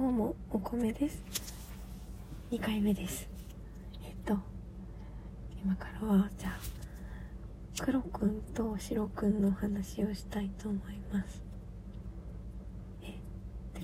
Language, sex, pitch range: Japanese, female, 195-225 Hz